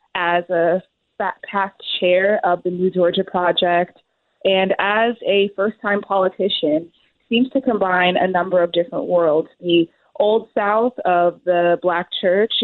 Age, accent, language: 20-39, American, English